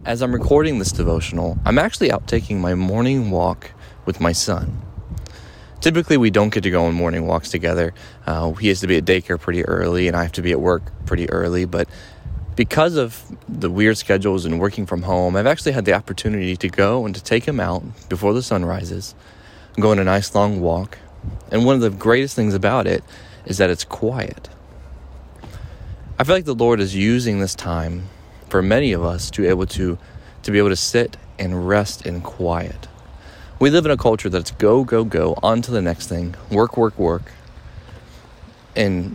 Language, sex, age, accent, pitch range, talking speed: English, male, 20-39, American, 85-110 Hz, 200 wpm